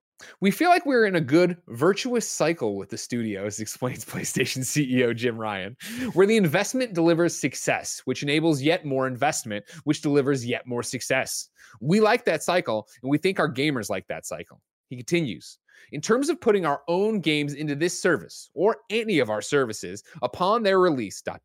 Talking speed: 180 wpm